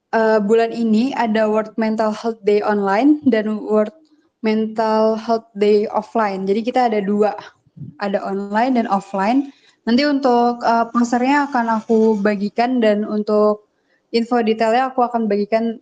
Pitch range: 210-240 Hz